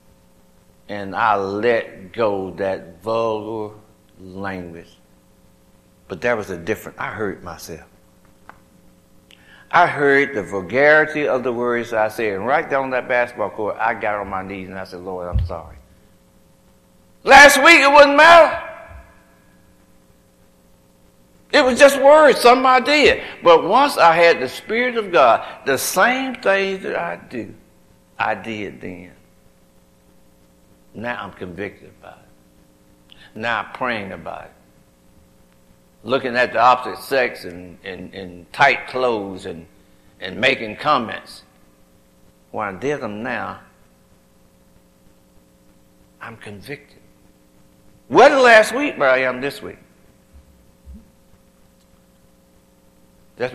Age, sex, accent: 60-79, male, American